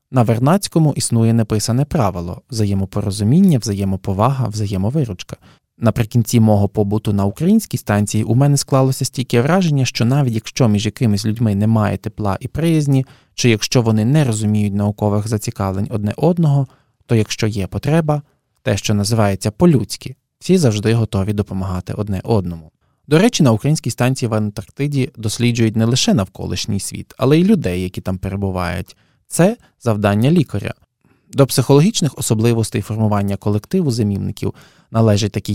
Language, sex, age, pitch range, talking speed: Ukrainian, male, 20-39, 105-140 Hz, 140 wpm